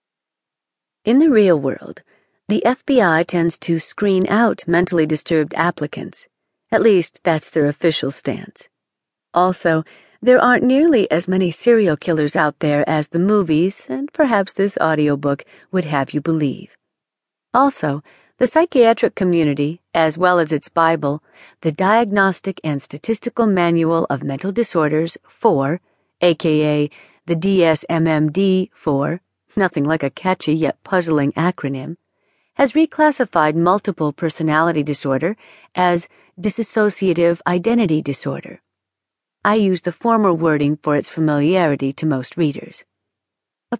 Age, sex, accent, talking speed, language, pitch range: 40-59, female, American, 125 wpm, English, 155-195 Hz